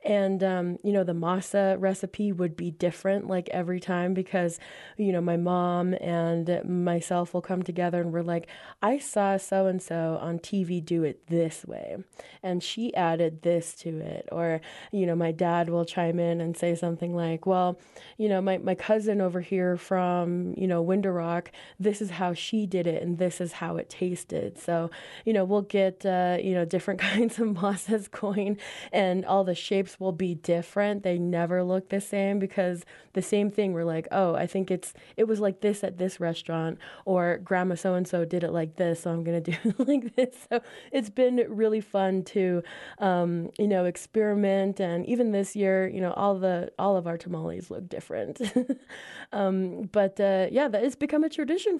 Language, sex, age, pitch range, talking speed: English, female, 20-39, 175-205 Hz, 195 wpm